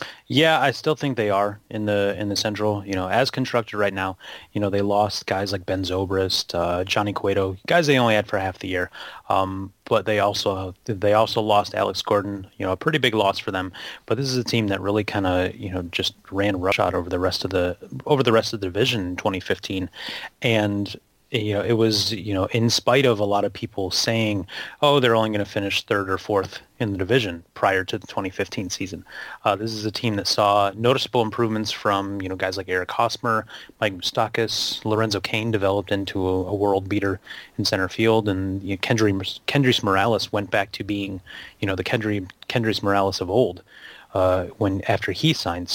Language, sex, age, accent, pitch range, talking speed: English, male, 30-49, American, 95-110 Hz, 210 wpm